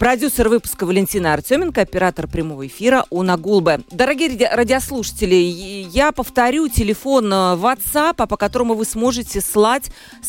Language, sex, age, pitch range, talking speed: Russian, female, 40-59, 185-255 Hz, 115 wpm